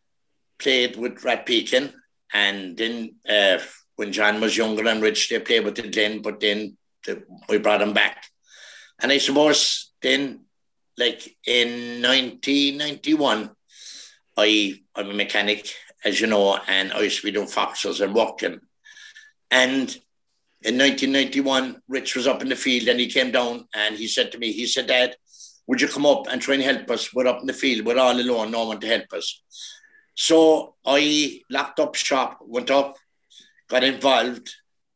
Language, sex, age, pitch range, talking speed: English, male, 60-79, 110-145 Hz, 175 wpm